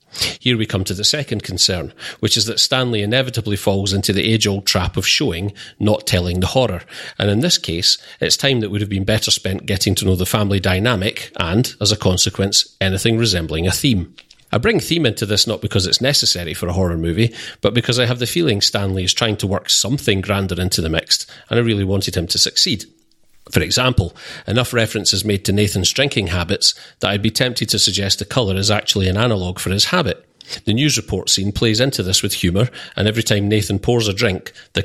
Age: 40-59